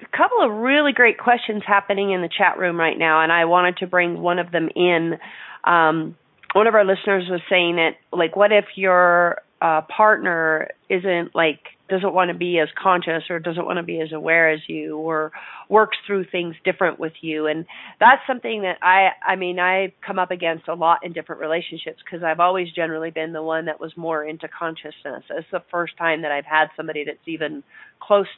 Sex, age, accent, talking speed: female, 40-59, American, 210 wpm